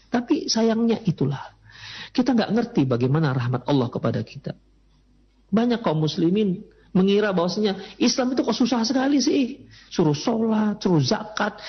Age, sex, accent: 40-59, male, native